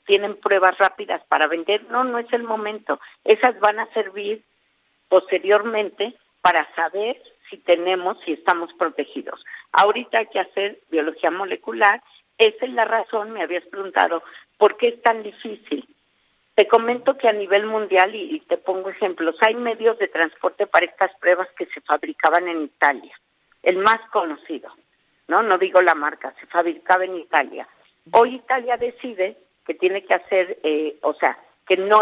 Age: 50-69